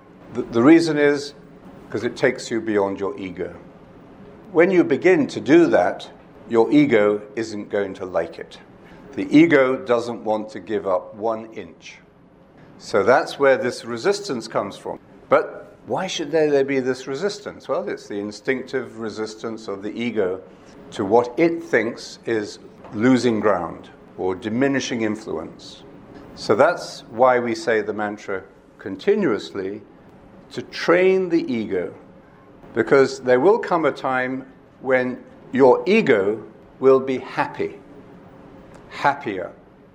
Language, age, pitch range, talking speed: English, 50-69, 110-160 Hz, 135 wpm